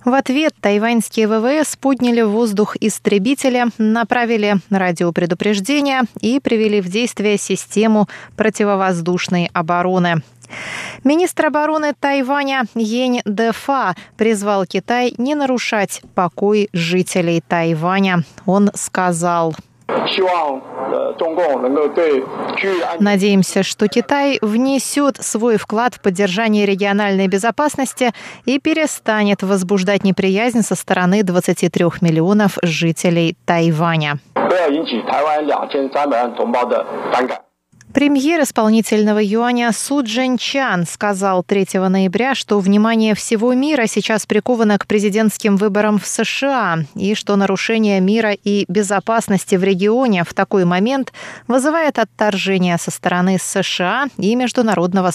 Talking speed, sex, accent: 95 wpm, female, native